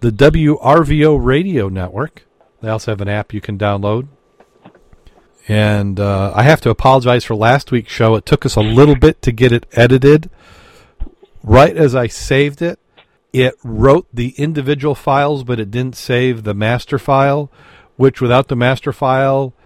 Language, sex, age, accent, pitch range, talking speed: English, male, 40-59, American, 100-130 Hz, 165 wpm